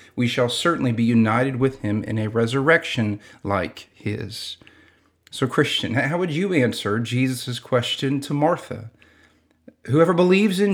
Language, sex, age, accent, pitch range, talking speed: English, male, 40-59, American, 125-155 Hz, 140 wpm